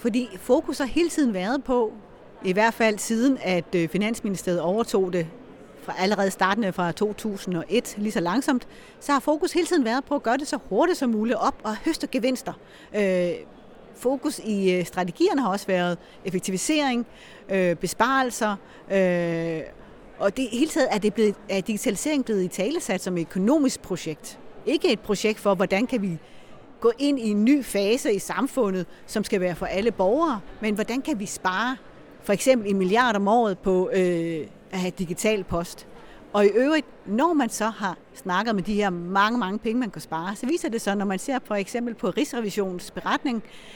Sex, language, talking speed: female, Danish, 180 wpm